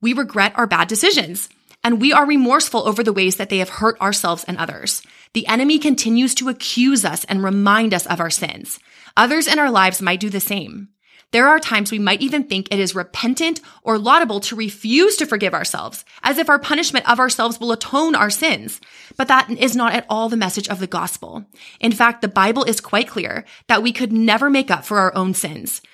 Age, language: 20-39, English